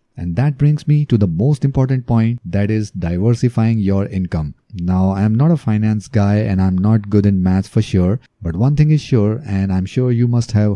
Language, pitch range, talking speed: English, 100-125 Hz, 220 wpm